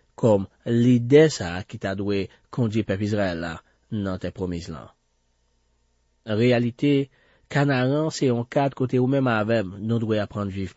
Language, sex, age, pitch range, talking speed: French, male, 40-59, 95-130 Hz, 135 wpm